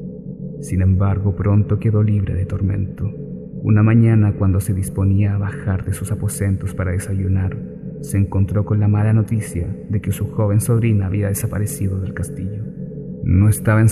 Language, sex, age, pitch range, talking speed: Spanish, male, 30-49, 95-110 Hz, 160 wpm